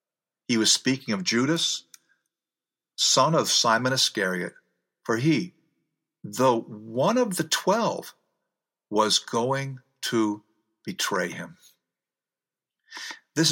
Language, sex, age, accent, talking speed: English, male, 50-69, American, 100 wpm